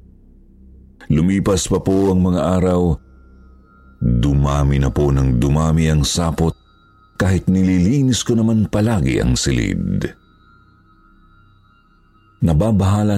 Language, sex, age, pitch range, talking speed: Filipino, male, 50-69, 65-95 Hz, 95 wpm